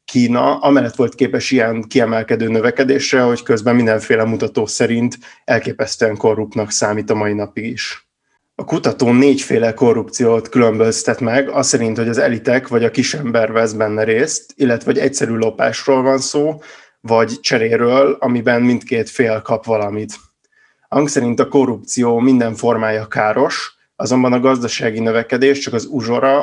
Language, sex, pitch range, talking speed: Hungarian, male, 110-130 Hz, 140 wpm